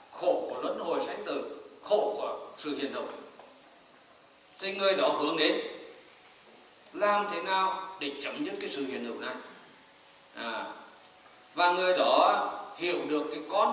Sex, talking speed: male, 155 wpm